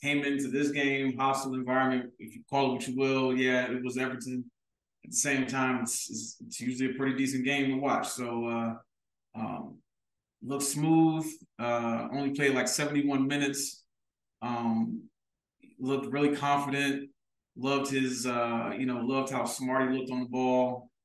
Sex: male